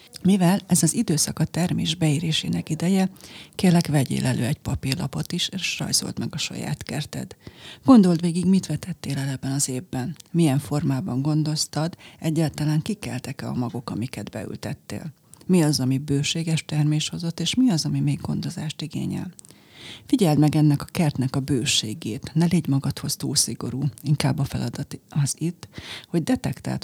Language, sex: Hungarian, female